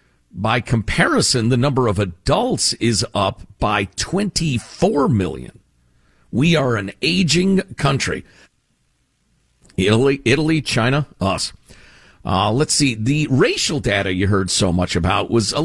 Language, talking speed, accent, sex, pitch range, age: English, 125 wpm, American, male, 95-145 Hz, 50-69